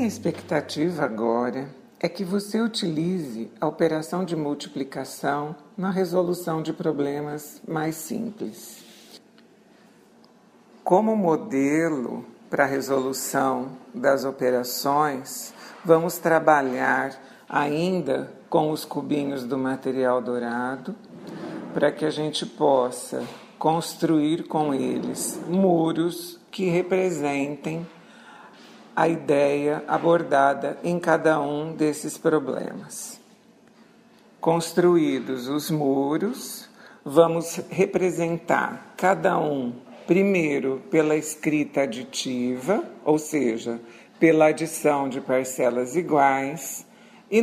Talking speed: 90 wpm